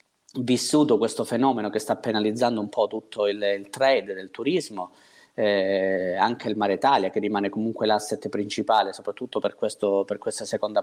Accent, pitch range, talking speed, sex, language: native, 105-125 Hz, 160 wpm, male, Italian